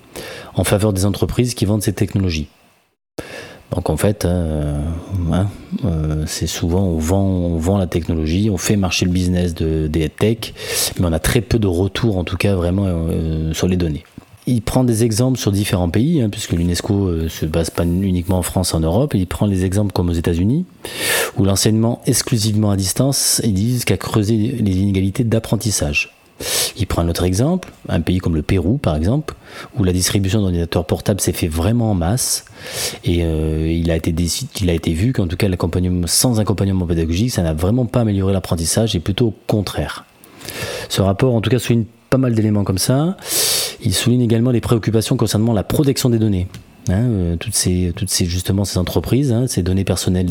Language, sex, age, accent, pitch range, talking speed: French, male, 30-49, French, 90-115 Hz, 200 wpm